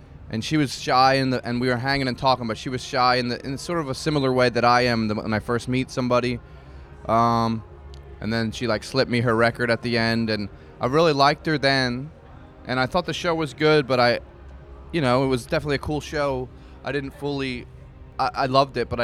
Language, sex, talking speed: French, male, 225 wpm